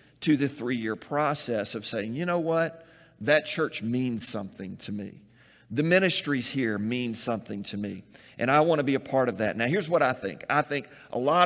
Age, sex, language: 40-59, male, English